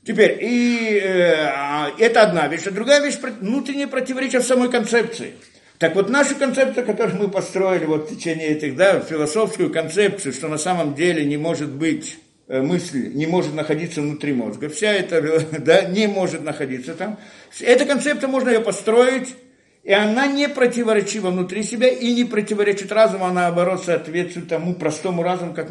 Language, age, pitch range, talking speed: Russian, 50-69, 170-235 Hz, 160 wpm